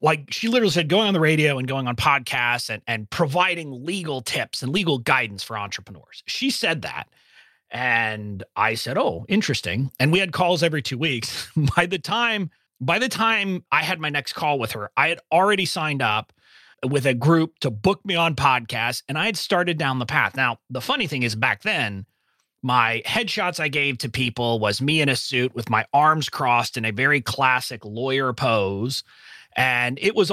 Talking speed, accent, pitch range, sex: 200 wpm, American, 115-160 Hz, male